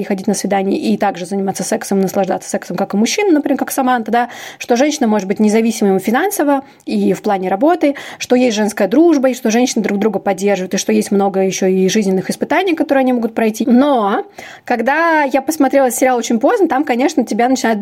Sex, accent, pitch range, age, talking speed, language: female, native, 205-270 Hz, 20-39, 200 wpm, Russian